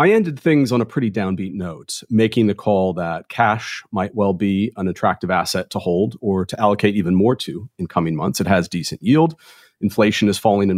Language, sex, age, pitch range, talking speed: English, male, 40-59, 100-125 Hz, 210 wpm